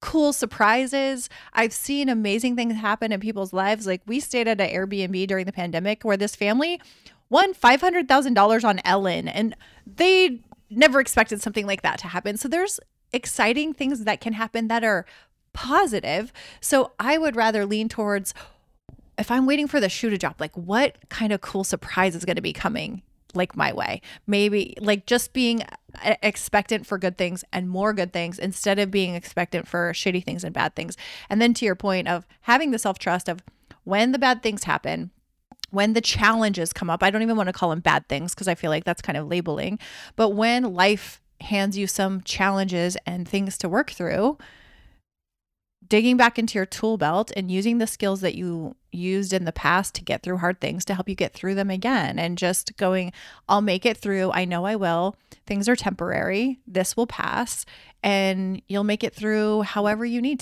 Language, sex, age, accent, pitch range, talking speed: English, female, 30-49, American, 185-230 Hz, 195 wpm